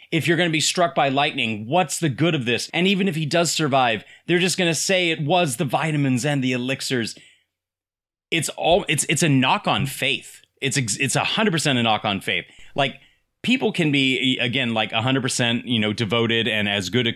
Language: English